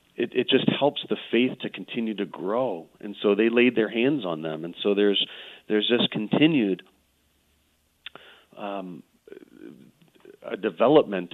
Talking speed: 145 wpm